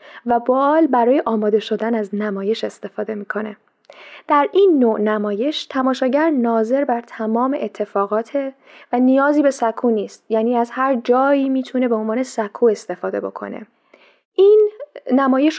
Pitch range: 215-260 Hz